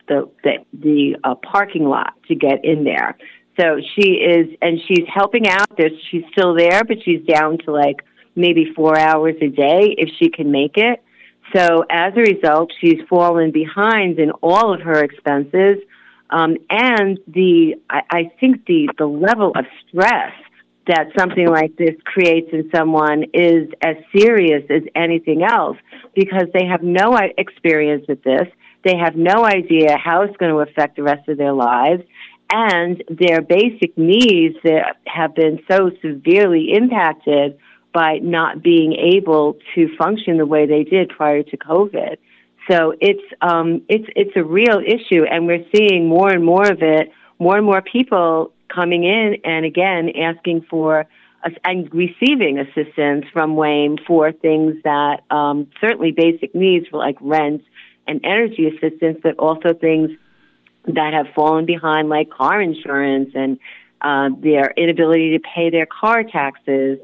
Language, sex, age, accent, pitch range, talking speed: English, female, 40-59, American, 155-180 Hz, 160 wpm